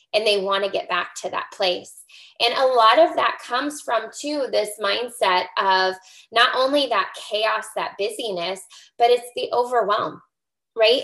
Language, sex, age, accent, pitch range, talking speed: English, female, 20-39, American, 200-260 Hz, 170 wpm